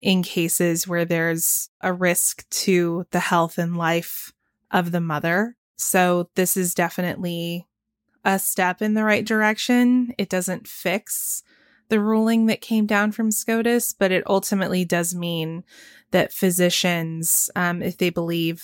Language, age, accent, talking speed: English, 20-39, American, 145 wpm